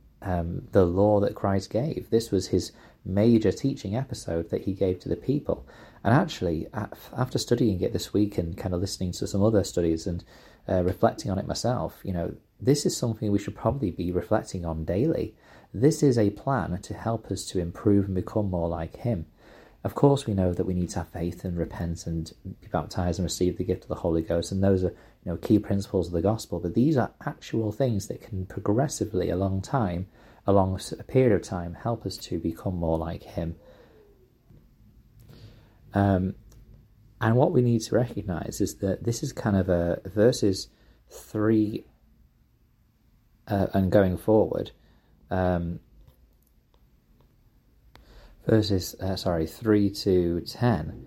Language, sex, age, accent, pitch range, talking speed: English, male, 30-49, British, 90-115 Hz, 175 wpm